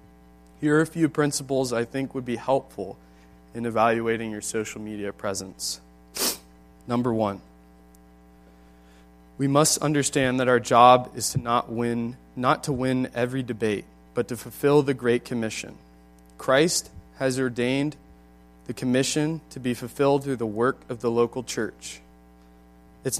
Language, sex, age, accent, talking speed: English, male, 20-39, American, 140 wpm